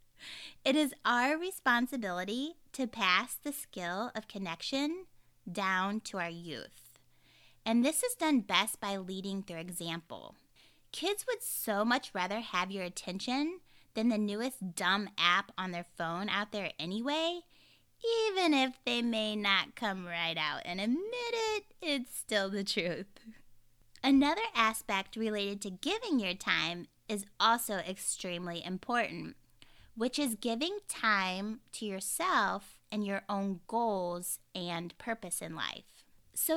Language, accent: English, American